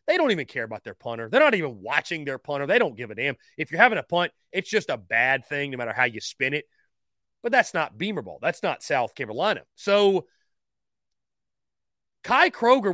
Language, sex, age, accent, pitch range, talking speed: English, male, 30-49, American, 155-235 Hz, 215 wpm